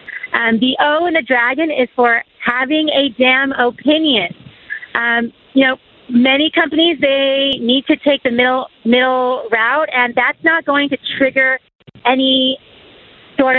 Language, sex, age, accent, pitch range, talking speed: English, female, 30-49, American, 230-275 Hz, 145 wpm